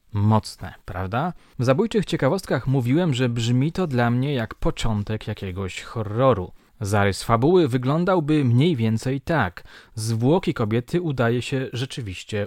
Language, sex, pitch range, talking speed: Polish, male, 105-150 Hz, 125 wpm